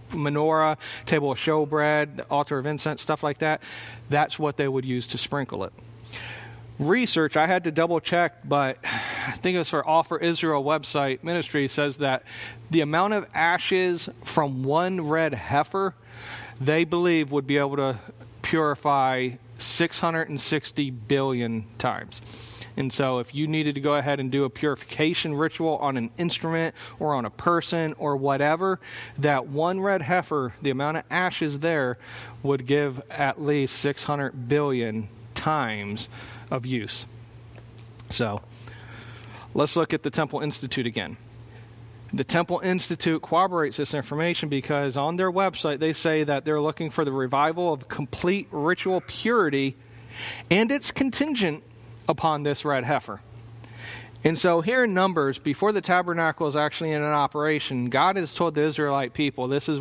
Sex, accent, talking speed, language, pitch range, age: male, American, 155 wpm, English, 125-160 Hz, 40-59